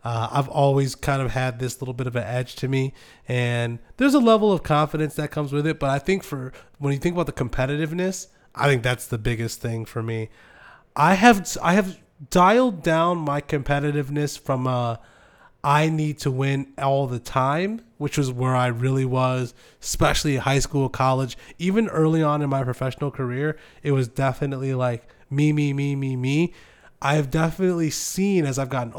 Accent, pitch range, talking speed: American, 125-155 Hz, 190 wpm